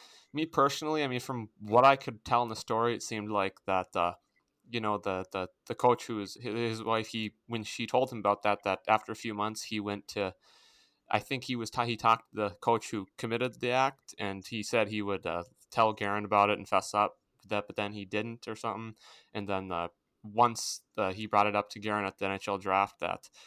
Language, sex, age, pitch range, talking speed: English, male, 20-39, 100-120 Hz, 235 wpm